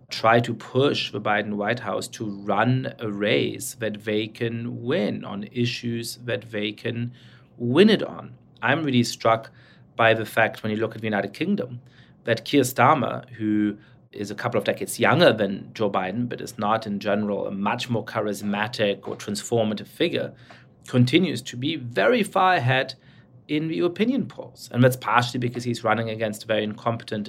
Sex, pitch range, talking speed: male, 110-130 Hz, 180 wpm